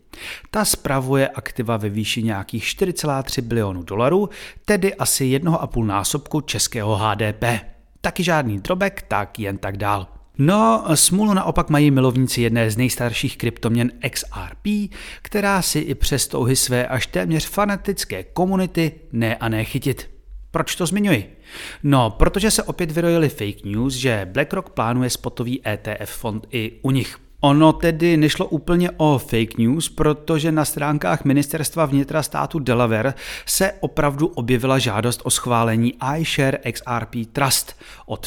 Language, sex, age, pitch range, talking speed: Czech, male, 30-49, 115-160 Hz, 145 wpm